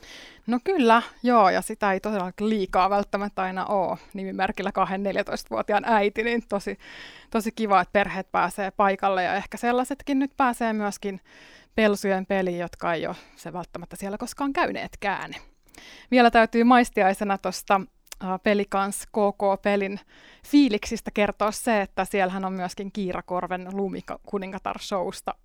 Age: 20-39